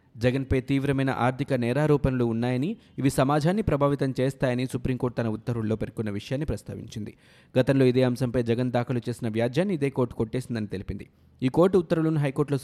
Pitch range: 115-140 Hz